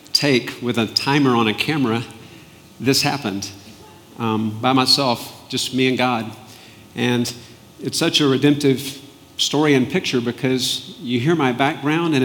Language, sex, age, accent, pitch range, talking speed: English, male, 50-69, American, 120-140 Hz, 145 wpm